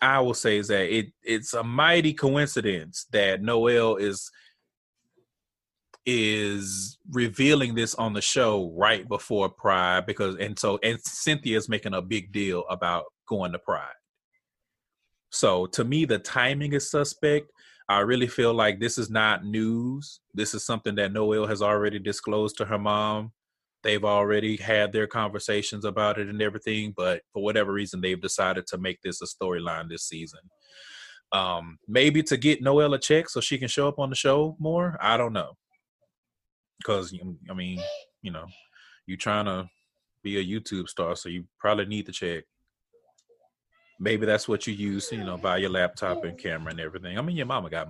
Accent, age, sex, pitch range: American, 30-49, male, 100-135 Hz